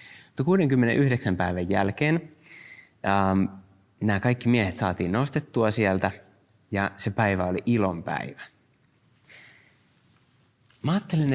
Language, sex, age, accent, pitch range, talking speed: Finnish, male, 30-49, native, 100-135 Hz, 90 wpm